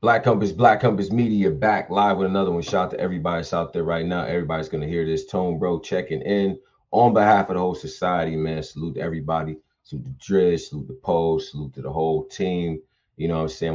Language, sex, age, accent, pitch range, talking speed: English, male, 30-49, American, 80-100 Hz, 225 wpm